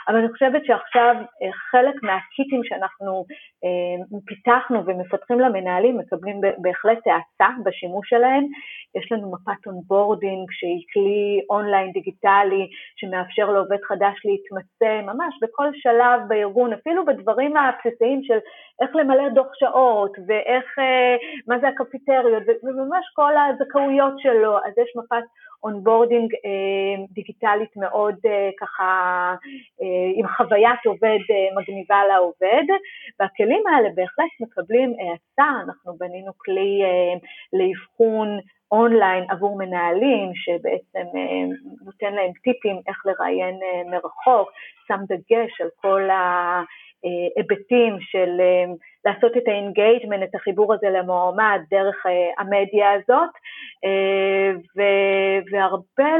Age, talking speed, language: 30-49, 125 wpm, Hebrew